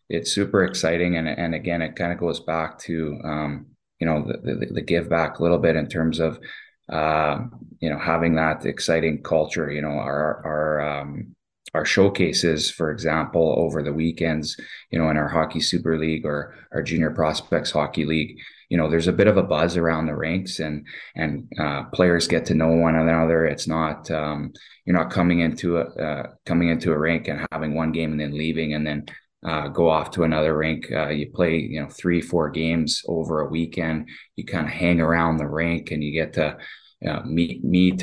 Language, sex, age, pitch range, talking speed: English, male, 20-39, 75-85 Hz, 210 wpm